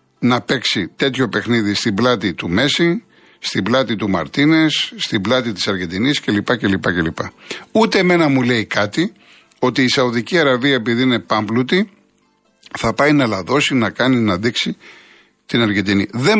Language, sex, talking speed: Greek, male, 155 wpm